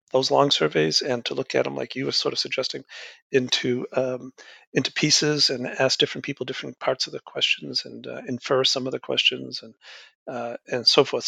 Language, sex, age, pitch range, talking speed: English, male, 50-69, 125-160 Hz, 205 wpm